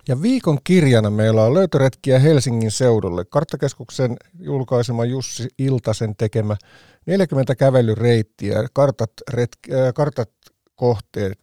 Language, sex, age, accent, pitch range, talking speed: Finnish, male, 50-69, native, 110-145 Hz, 85 wpm